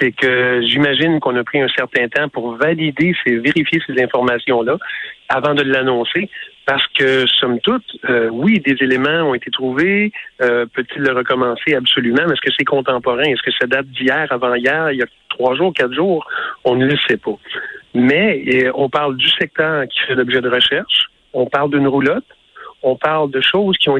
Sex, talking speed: male, 200 wpm